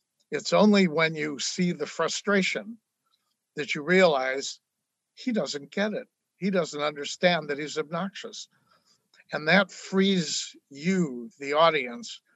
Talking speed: 125 wpm